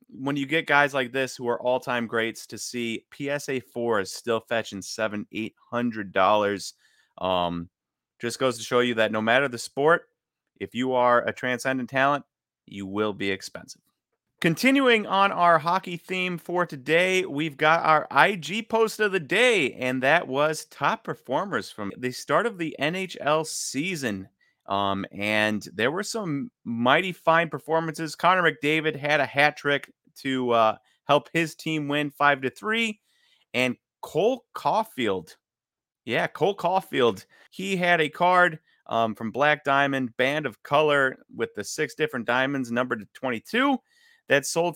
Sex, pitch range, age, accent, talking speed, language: male, 120-170 Hz, 30-49, American, 160 wpm, English